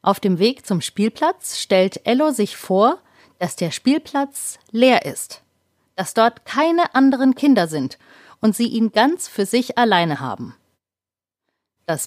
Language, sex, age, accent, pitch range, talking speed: German, female, 30-49, German, 175-255 Hz, 145 wpm